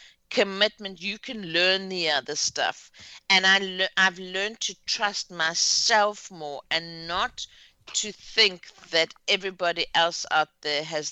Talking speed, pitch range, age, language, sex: 130 wpm, 155-205 Hz, 50-69, English, female